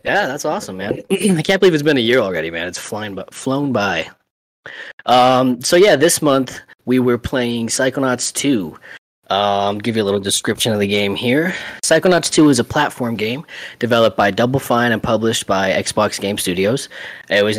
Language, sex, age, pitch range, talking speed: English, male, 20-39, 100-125 Hz, 190 wpm